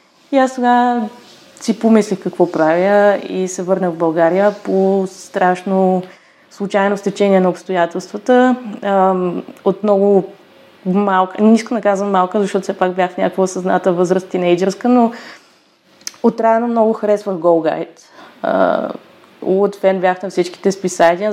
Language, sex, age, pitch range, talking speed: Bulgarian, female, 20-39, 180-210 Hz, 125 wpm